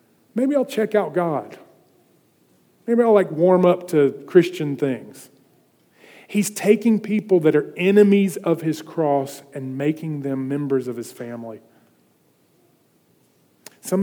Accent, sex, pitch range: American, male, 125-160 Hz